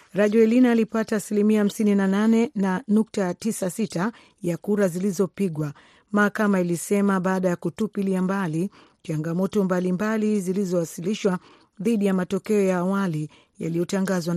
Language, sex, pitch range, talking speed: Swahili, female, 175-215 Hz, 95 wpm